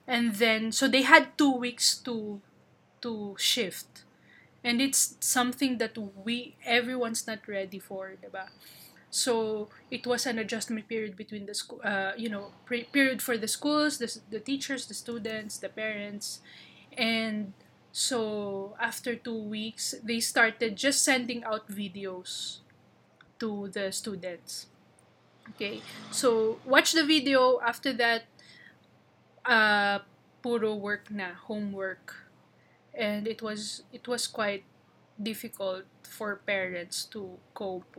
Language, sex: Filipino, female